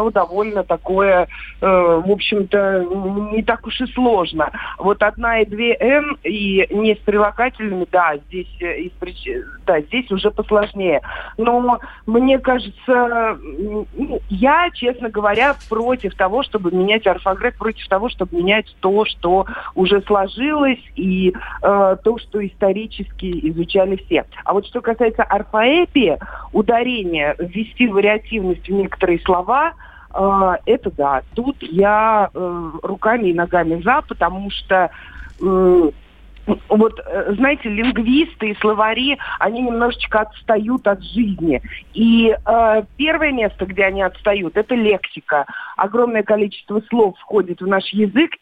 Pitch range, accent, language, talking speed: 190-235 Hz, native, Russian, 125 wpm